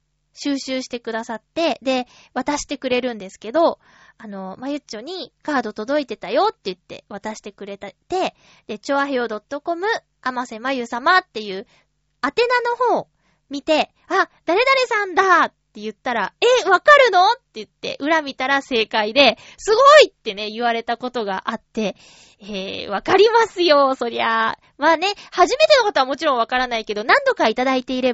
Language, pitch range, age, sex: Japanese, 225-340 Hz, 20-39, female